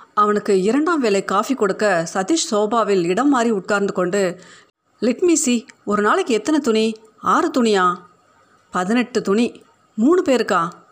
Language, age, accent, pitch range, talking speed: Tamil, 30-49, native, 200-250 Hz, 120 wpm